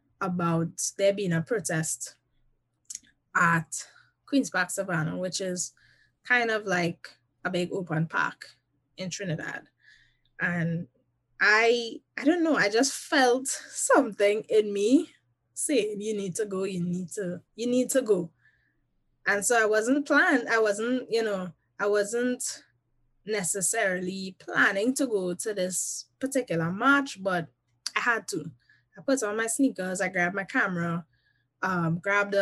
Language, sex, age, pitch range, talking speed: English, female, 10-29, 165-215 Hz, 140 wpm